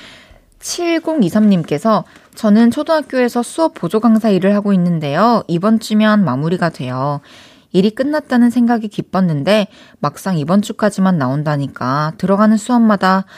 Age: 20-39